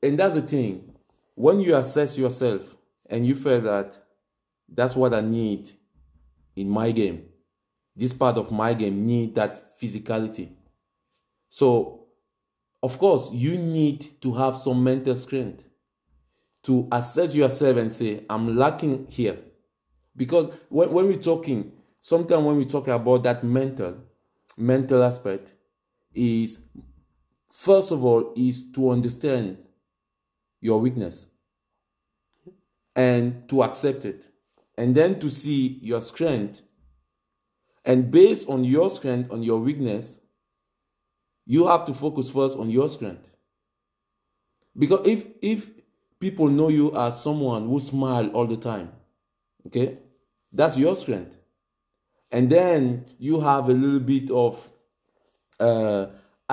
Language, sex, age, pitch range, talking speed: English, male, 50-69, 105-135 Hz, 125 wpm